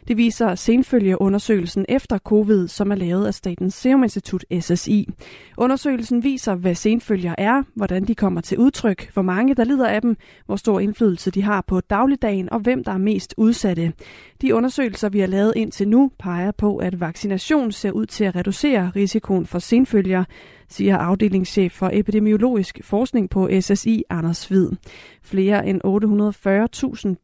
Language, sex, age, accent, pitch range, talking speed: Danish, female, 30-49, native, 190-230 Hz, 160 wpm